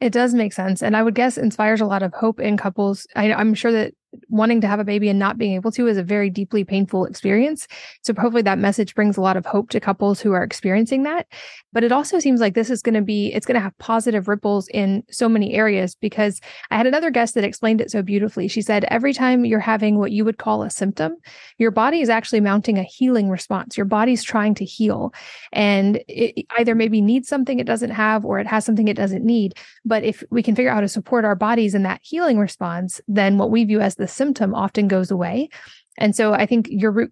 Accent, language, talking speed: American, English, 245 wpm